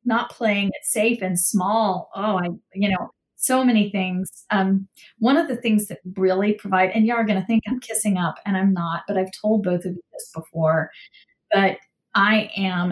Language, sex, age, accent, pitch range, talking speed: English, female, 40-59, American, 185-220 Hz, 205 wpm